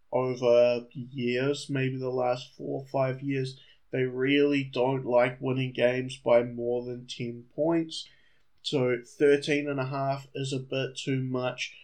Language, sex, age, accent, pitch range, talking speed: English, male, 20-39, Australian, 125-140 Hz, 140 wpm